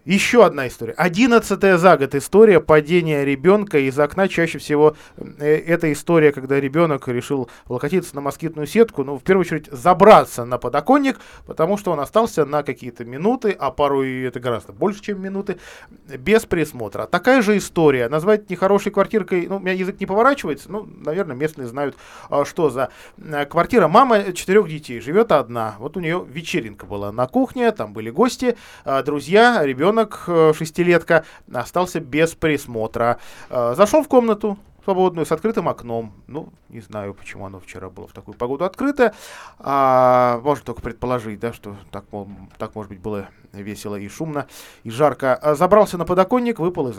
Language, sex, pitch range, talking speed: Russian, male, 125-185 Hz, 160 wpm